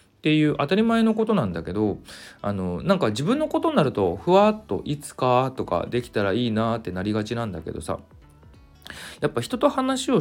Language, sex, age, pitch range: Japanese, male, 40-59, 85-145 Hz